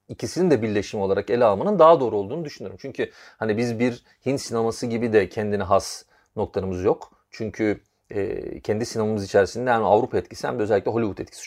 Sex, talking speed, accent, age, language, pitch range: male, 180 wpm, native, 40-59, Turkish, 105-175 Hz